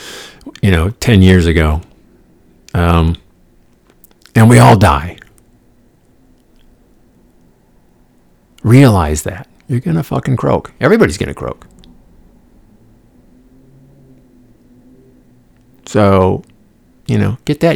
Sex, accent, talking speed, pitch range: male, American, 90 wpm, 85-120 Hz